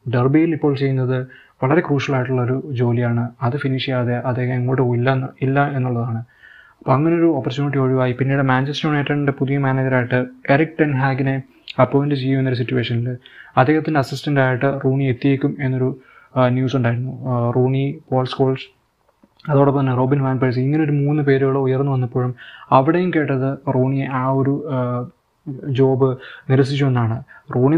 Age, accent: 20-39, native